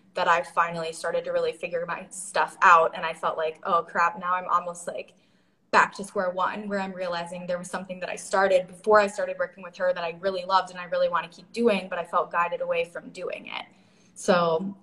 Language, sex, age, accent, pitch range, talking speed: English, female, 20-39, American, 175-200 Hz, 240 wpm